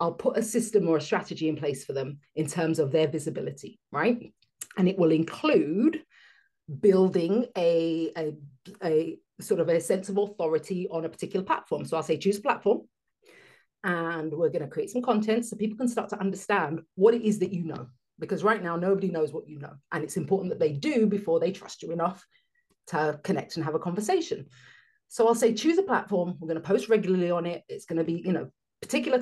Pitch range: 165-255 Hz